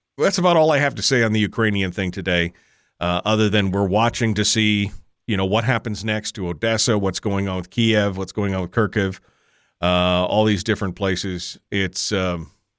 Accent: American